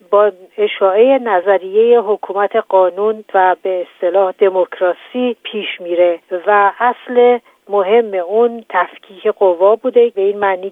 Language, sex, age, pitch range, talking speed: Persian, female, 50-69, 185-230 Hz, 120 wpm